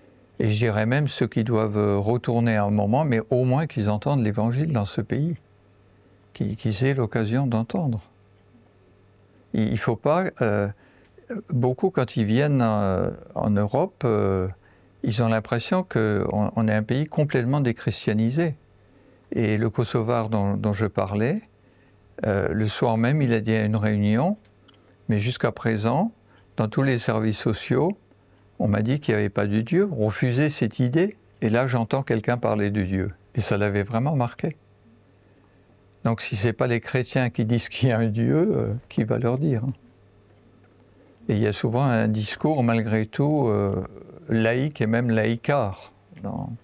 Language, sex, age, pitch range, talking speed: French, male, 50-69, 105-125 Hz, 165 wpm